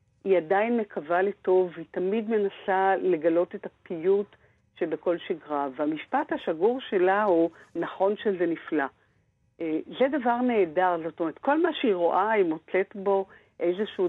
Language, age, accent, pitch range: Hebrew, 50-69, native, 170-215 Hz